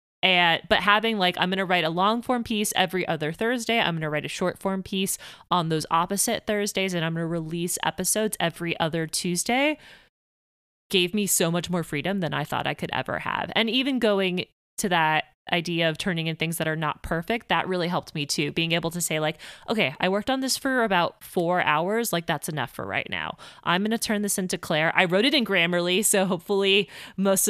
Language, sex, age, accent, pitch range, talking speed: English, female, 20-39, American, 165-200 Hz, 225 wpm